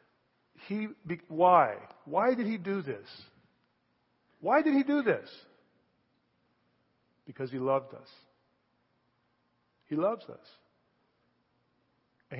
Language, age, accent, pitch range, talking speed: English, 50-69, American, 160-195 Hz, 95 wpm